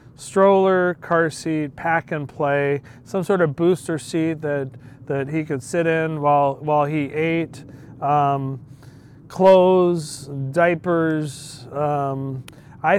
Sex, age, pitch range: male, 40-59, 135-160 Hz